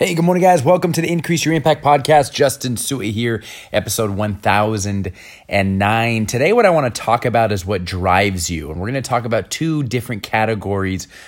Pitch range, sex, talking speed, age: 95-125 Hz, male, 190 wpm, 30-49